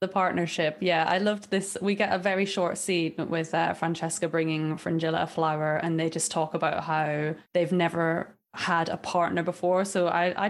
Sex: female